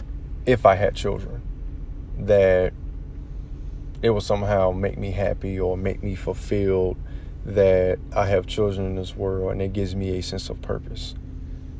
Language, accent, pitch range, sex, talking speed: English, American, 90-100 Hz, male, 155 wpm